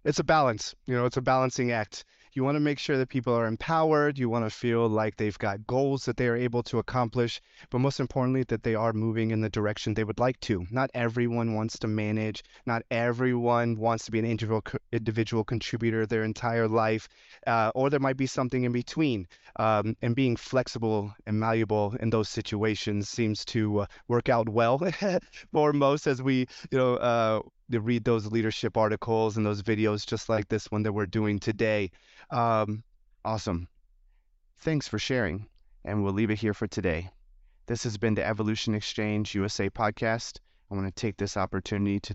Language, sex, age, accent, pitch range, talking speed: English, male, 30-49, American, 105-120 Hz, 195 wpm